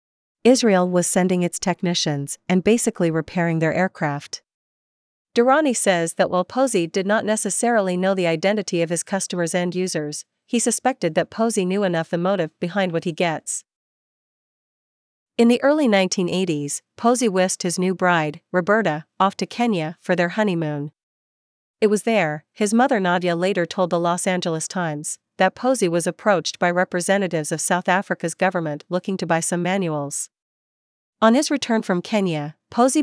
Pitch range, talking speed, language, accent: 170-205 Hz, 160 wpm, English, American